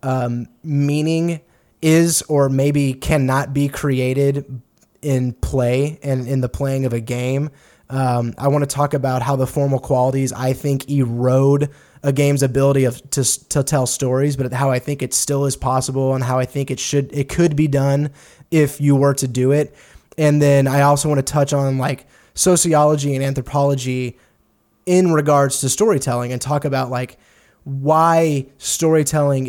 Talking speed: 170 wpm